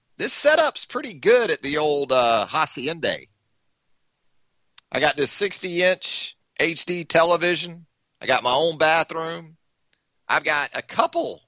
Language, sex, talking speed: English, male, 125 wpm